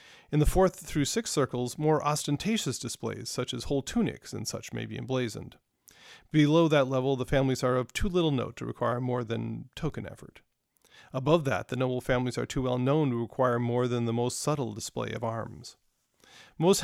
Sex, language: male, English